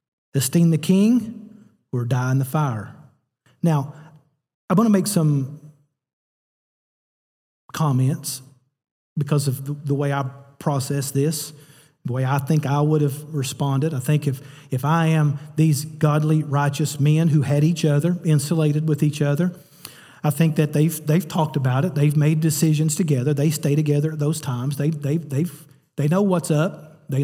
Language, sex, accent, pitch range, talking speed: English, male, American, 140-165 Hz, 165 wpm